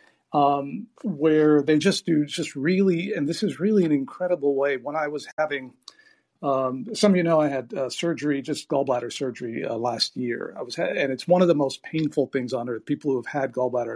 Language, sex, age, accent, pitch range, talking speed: English, male, 50-69, American, 130-160 Hz, 220 wpm